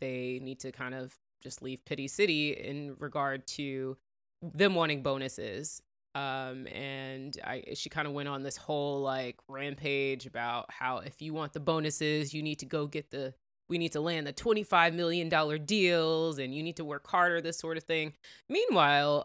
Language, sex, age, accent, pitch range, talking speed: English, female, 20-39, American, 140-165 Hz, 185 wpm